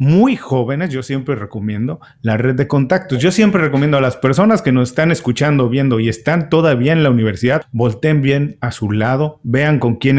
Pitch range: 125-160 Hz